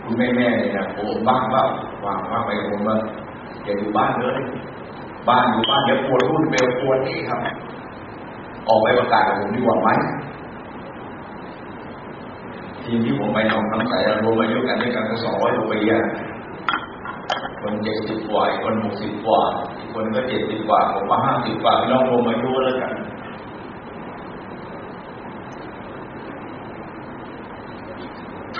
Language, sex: Thai, male